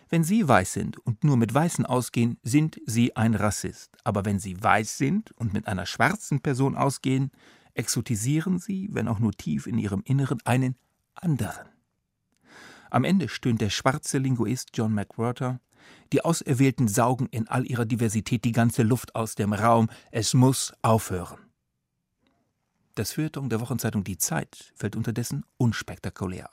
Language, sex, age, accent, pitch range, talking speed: German, male, 40-59, German, 105-135 Hz, 155 wpm